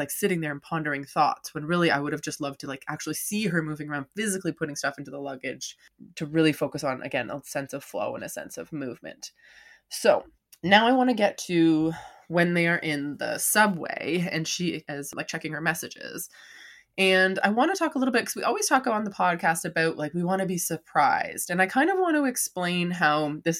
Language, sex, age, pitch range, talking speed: English, female, 20-39, 155-205 Hz, 230 wpm